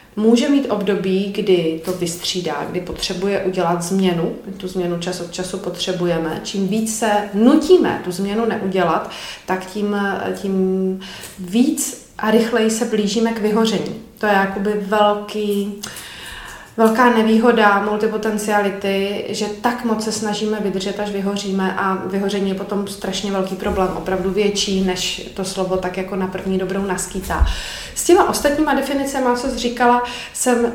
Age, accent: 30-49, native